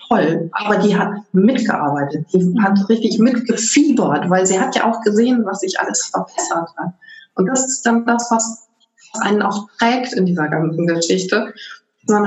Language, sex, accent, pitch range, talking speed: German, female, German, 185-245 Hz, 165 wpm